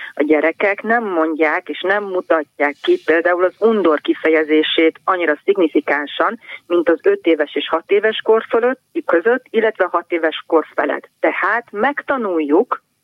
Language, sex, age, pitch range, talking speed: Hungarian, female, 30-49, 160-195 Hz, 145 wpm